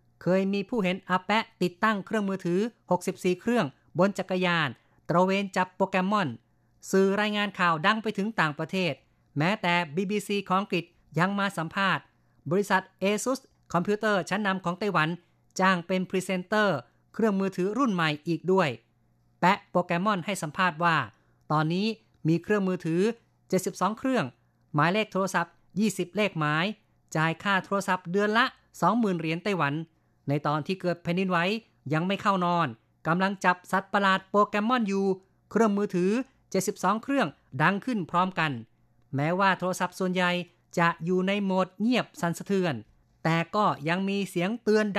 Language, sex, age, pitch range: Thai, female, 30-49, 165-200 Hz